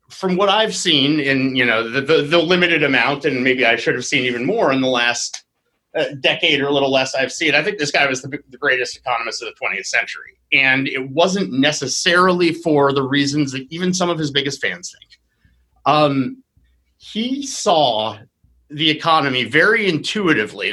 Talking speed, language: 190 wpm, English